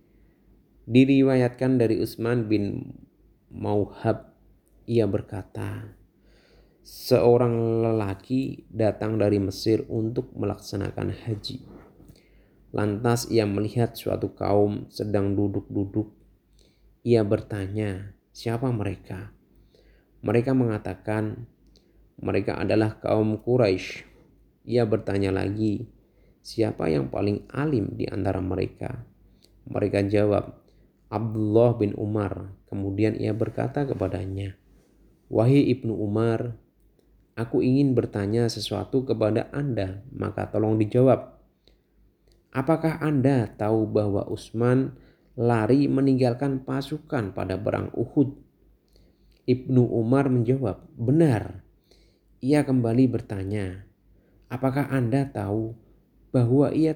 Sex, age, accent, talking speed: male, 20-39, native, 90 wpm